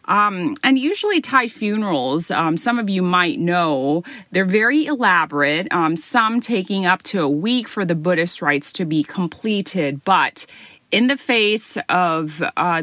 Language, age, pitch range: Thai, 30-49, 165-225 Hz